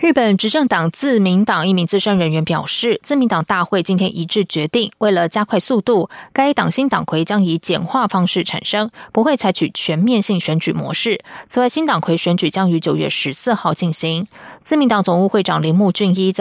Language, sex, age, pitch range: German, female, 20-39, 170-220 Hz